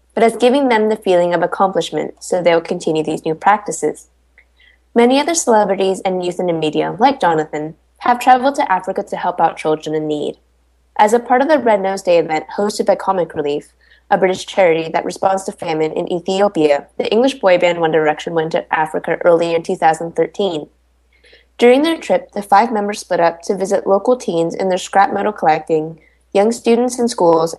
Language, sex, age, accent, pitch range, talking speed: English, female, 10-29, American, 165-220 Hz, 195 wpm